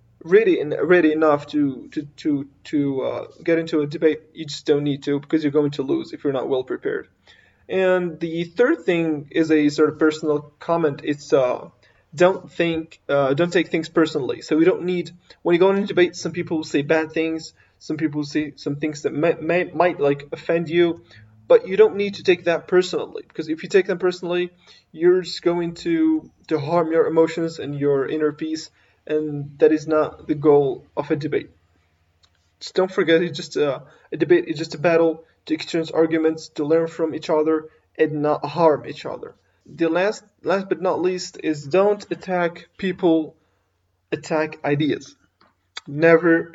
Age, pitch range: 20-39, 150-175 Hz